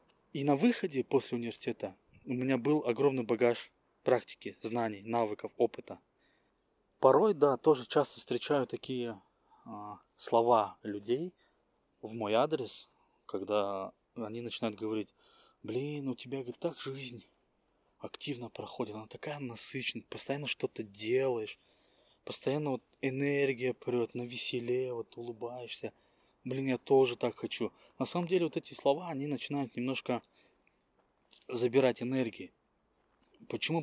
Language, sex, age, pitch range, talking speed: Russian, male, 20-39, 115-140 Hz, 120 wpm